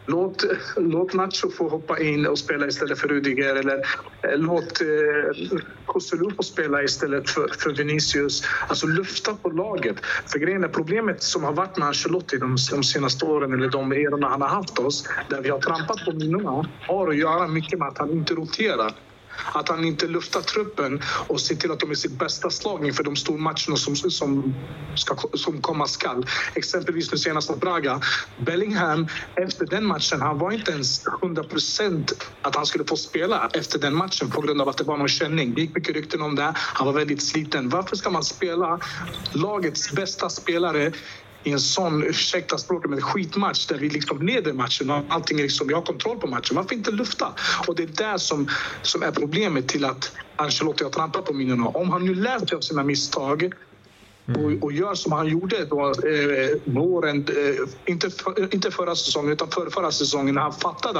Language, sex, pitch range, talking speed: Swedish, male, 145-175 Hz, 195 wpm